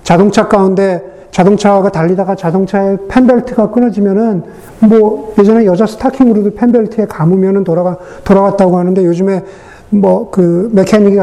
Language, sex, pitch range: Korean, male, 175-210 Hz